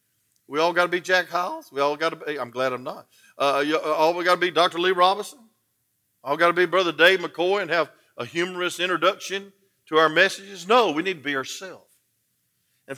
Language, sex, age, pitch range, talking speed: English, male, 50-69, 160-240 Hz, 220 wpm